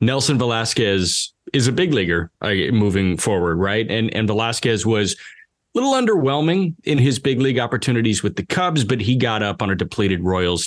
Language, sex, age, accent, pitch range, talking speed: English, male, 30-49, American, 100-135 Hz, 185 wpm